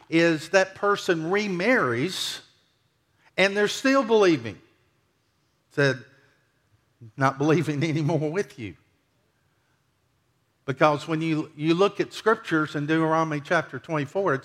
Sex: male